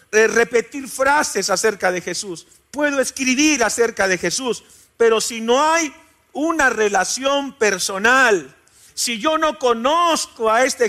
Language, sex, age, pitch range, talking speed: Spanish, male, 50-69, 210-275 Hz, 125 wpm